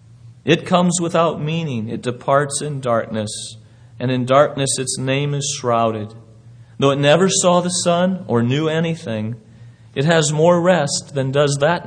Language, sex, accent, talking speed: English, male, American, 155 wpm